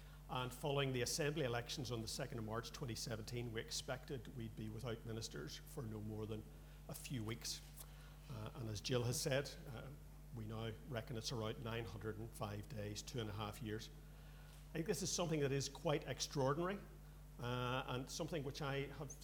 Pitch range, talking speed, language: 115-150 Hz, 180 wpm, English